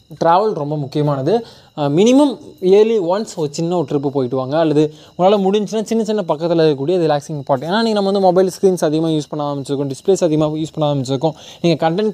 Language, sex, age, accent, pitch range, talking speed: Tamil, male, 20-39, native, 140-185 Hz, 190 wpm